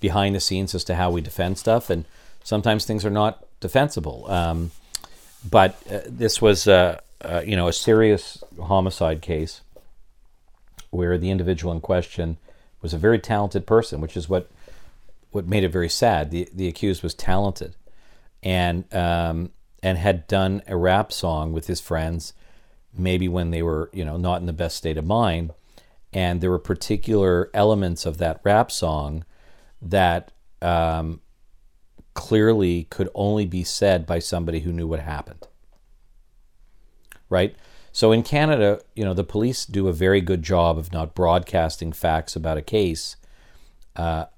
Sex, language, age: male, English, 50-69